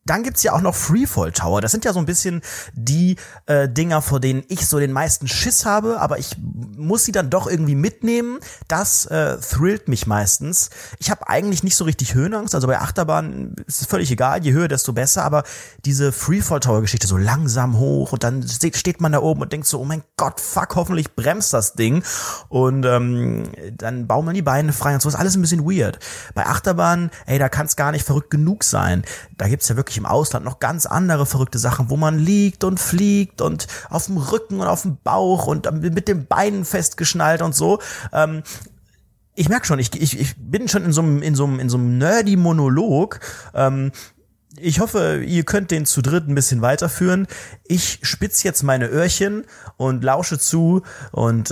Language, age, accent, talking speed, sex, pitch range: German, 30-49, German, 205 wpm, male, 130-175 Hz